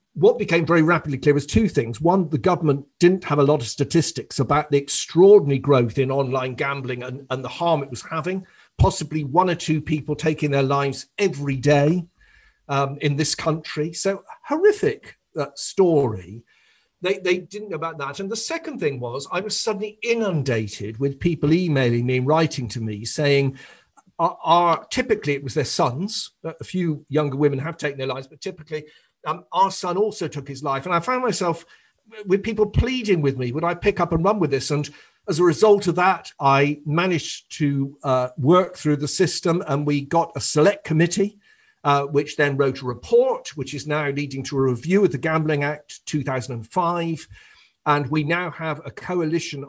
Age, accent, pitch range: 50-69, British, 140-180 Hz